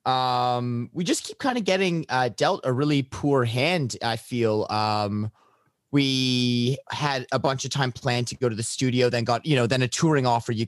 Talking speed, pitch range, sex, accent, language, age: 210 wpm, 115-155 Hz, male, American, English, 30-49